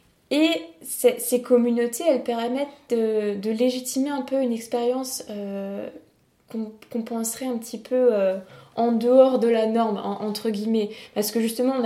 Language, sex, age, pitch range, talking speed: French, female, 20-39, 205-245 Hz, 165 wpm